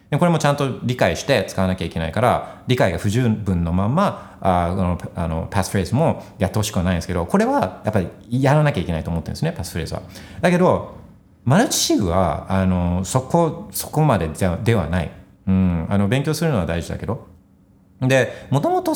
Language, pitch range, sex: Japanese, 90-125 Hz, male